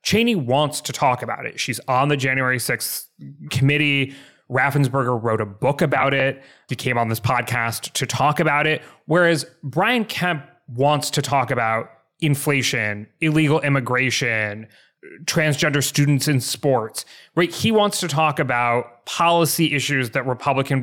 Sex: male